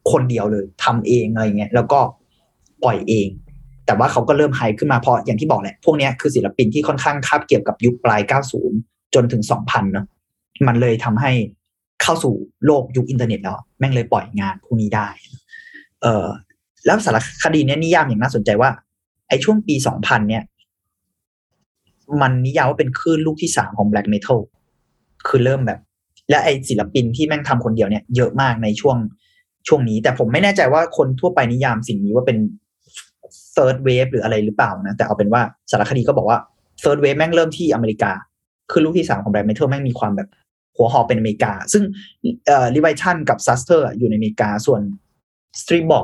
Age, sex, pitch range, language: 30-49, male, 105-140 Hz, Thai